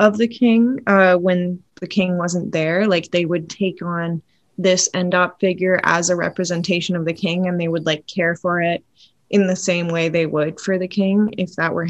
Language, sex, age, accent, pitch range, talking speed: English, female, 20-39, American, 170-205 Hz, 215 wpm